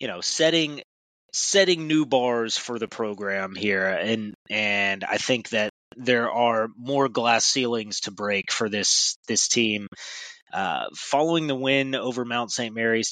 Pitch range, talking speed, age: 110-130 Hz, 155 wpm, 20-39